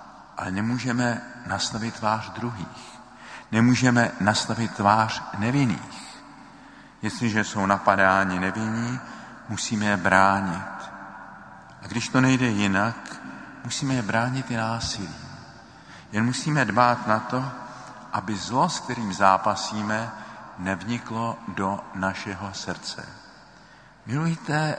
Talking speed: 100 wpm